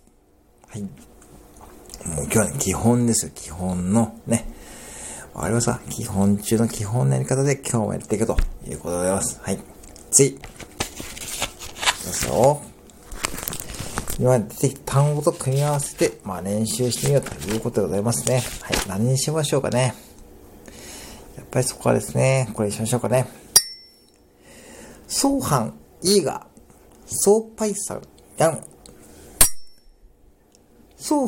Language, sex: Japanese, male